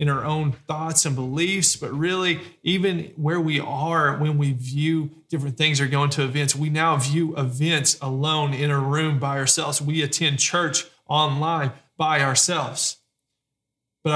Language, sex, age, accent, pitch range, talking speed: English, male, 30-49, American, 140-165 Hz, 160 wpm